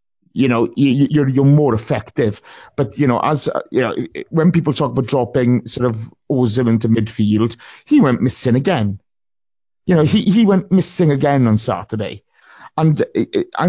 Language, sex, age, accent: English, male, 30-49, British